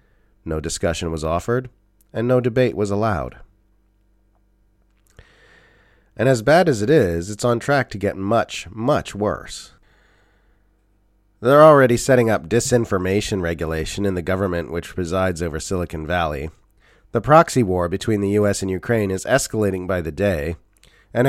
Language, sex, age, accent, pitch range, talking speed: English, male, 30-49, American, 95-115 Hz, 145 wpm